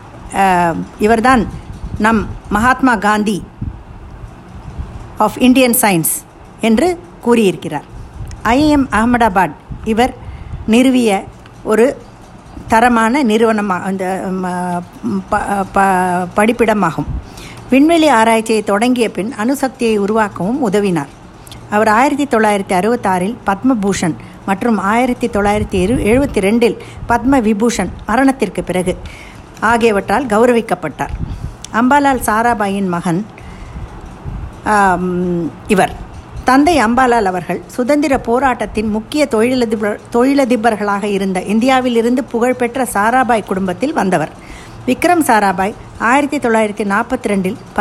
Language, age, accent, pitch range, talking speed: Tamil, 50-69, native, 195-245 Hz, 85 wpm